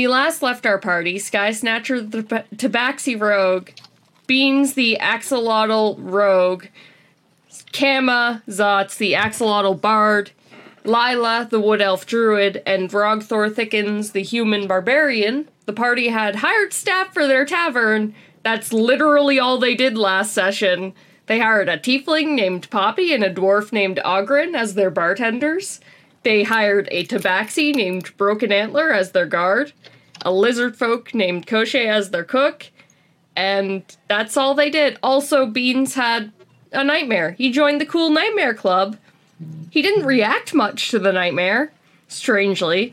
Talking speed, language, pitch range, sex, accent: 140 wpm, English, 200-265 Hz, female, American